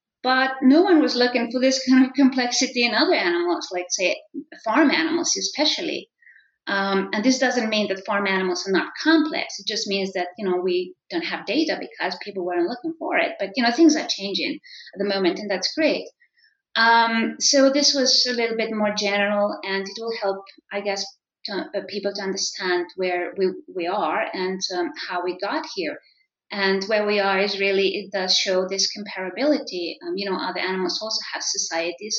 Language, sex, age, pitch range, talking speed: English, female, 30-49, 190-275 Hz, 195 wpm